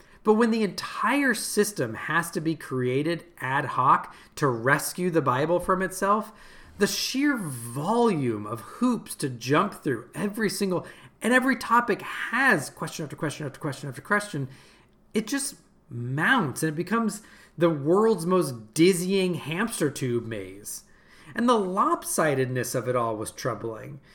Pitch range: 130-195 Hz